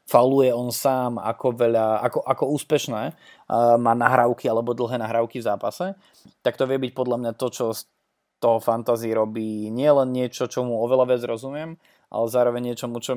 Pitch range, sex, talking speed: 110-125 Hz, male, 175 wpm